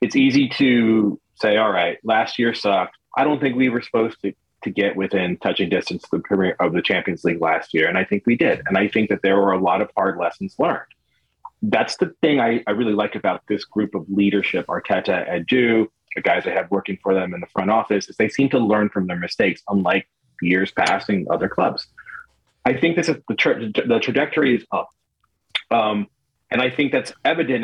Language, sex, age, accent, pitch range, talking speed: English, male, 30-49, American, 105-140 Hz, 220 wpm